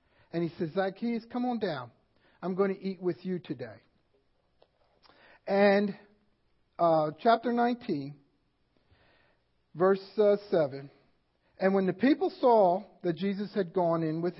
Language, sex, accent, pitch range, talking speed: English, male, American, 150-205 Hz, 135 wpm